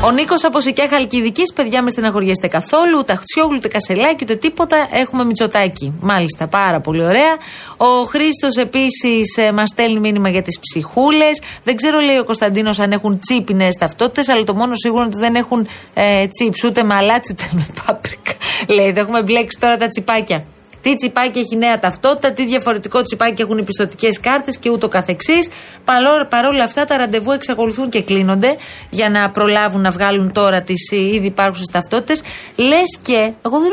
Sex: female